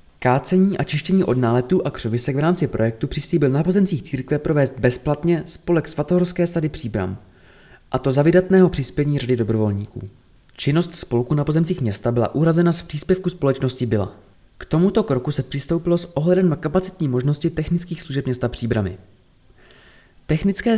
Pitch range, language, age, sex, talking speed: 120-175 Hz, Czech, 20-39, male, 155 wpm